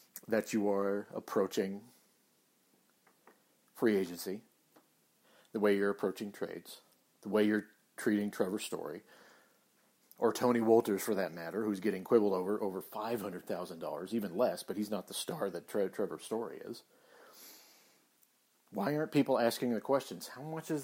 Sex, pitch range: male, 105-130 Hz